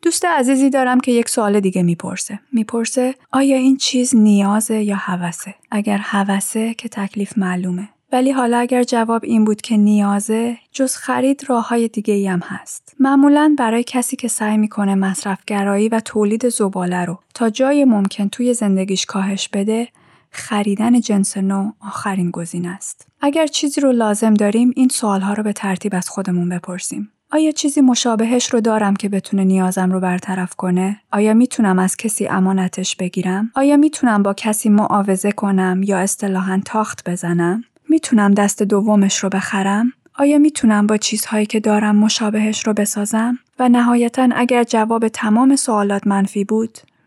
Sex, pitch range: female, 200-240 Hz